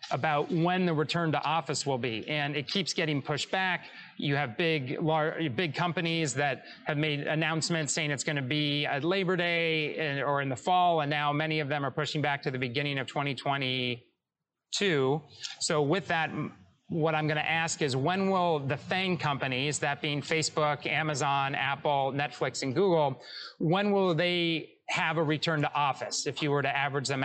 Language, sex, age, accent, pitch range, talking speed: English, male, 30-49, American, 145-170 Hz, 185 wpm